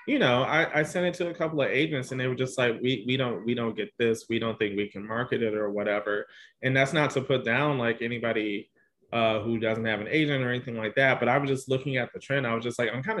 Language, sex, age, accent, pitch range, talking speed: English, male, 20-39, American, 115-130 Hz, 280 wpm